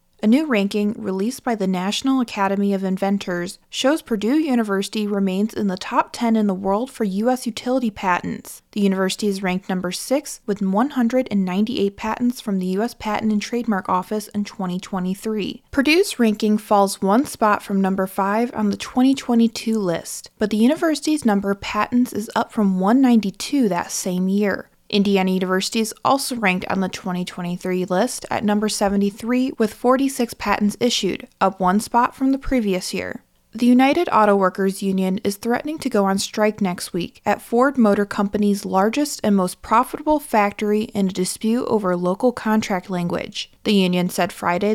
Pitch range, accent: 195-235 Hz, American